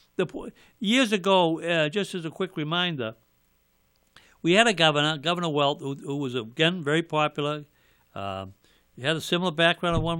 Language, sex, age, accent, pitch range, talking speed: English, male, 60-79, American, 145-170 Hz, 175 wpm